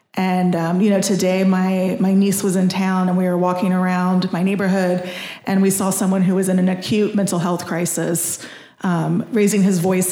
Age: 30-49